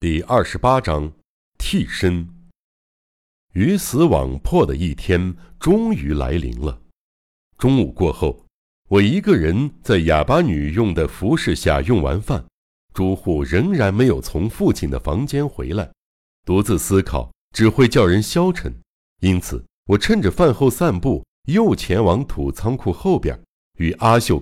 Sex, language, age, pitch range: male, Chinese, 60-79, 80-125 Hz